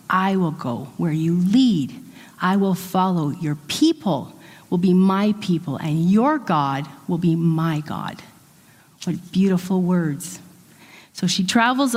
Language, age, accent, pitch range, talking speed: English, 40-59, American, 160-210 Hz, 140 wpm